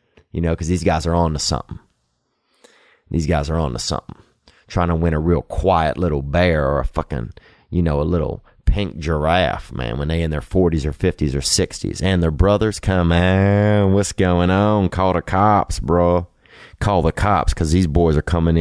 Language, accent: English, American